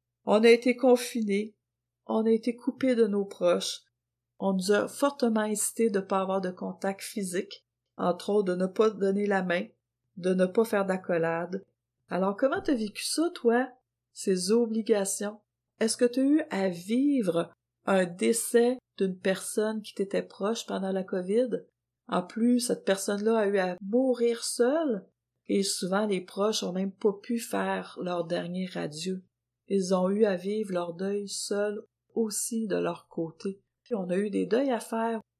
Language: French